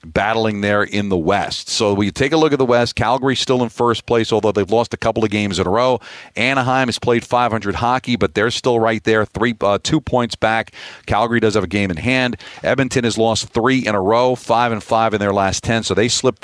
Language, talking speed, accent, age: English, 250 wpm, American, 40-59